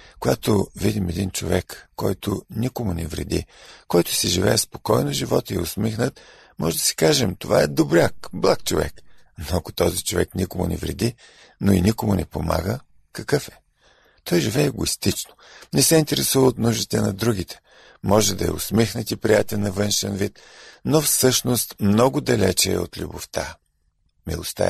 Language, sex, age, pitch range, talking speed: Bulgarian, male, 50-69, 85-115 Hz, 160 wpm